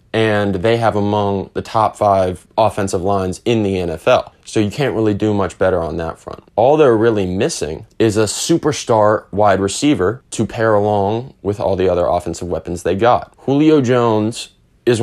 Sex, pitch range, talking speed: male, 100-115 Hz, 180 wpm